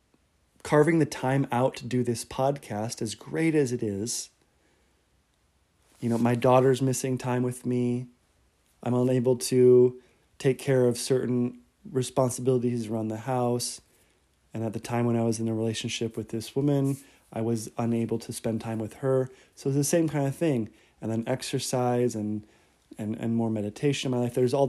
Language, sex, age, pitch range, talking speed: English, male, 30-49, 110-130 Hz, 175 wpm